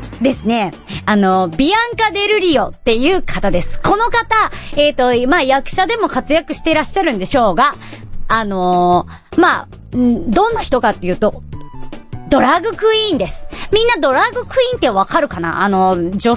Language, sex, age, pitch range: Japanese, male, 40-59, 190-300 Hz